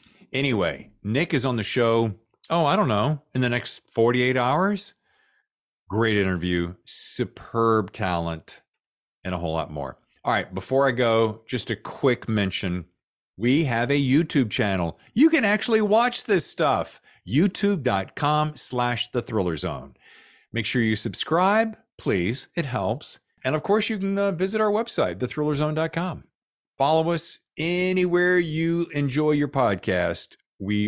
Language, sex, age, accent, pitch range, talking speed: English, male, 50-69, American, 105-170 Hz, 140 wpm